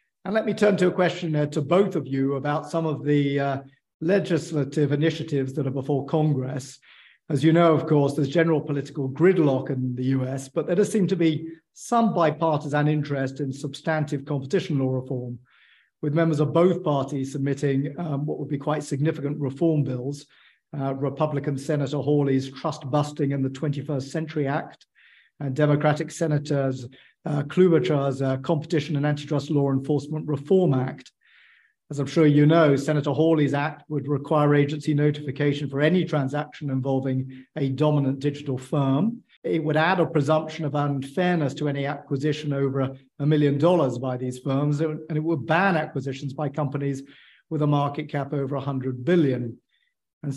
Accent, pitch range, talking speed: British, 140-155 Hz, 165 wpm